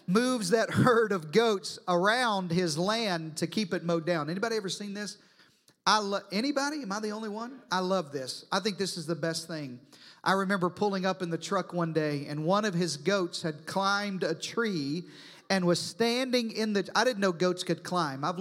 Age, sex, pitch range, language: 40-59, male, 170-220 Hz, English